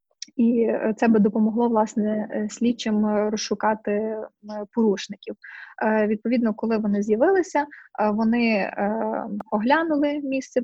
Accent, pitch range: native, 210-255 Hz